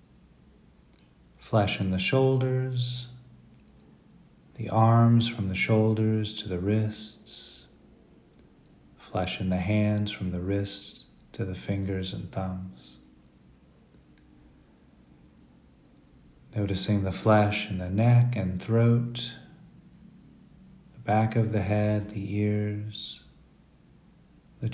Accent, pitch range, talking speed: American, 95-115 Hz, 95 wpm